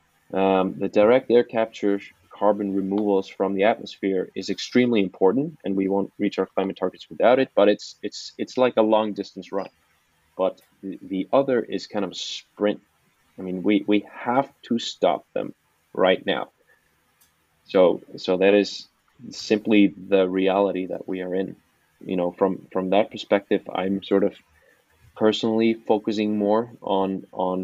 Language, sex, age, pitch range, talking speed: English, male, 20-39, 95-110 Hz, 160 wpm